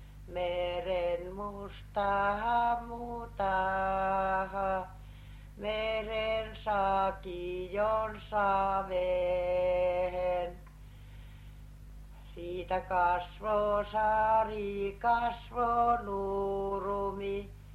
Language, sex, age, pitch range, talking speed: Finnish, female, 60-79, 180-210 Hz, 35 wpm